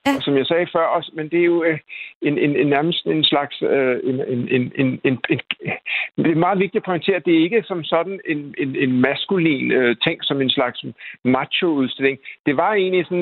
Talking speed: 215 wpm